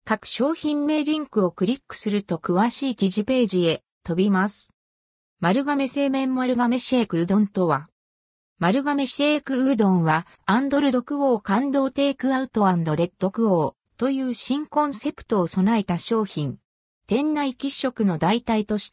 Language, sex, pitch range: Japanese, female, 185-265 Hz